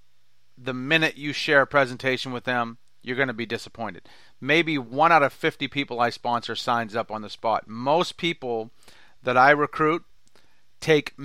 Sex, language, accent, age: male, English, American, 40-59